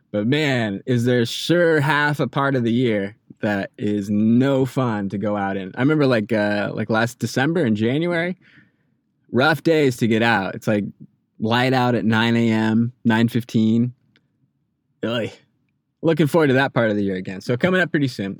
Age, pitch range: 20-39, 110-140 Hz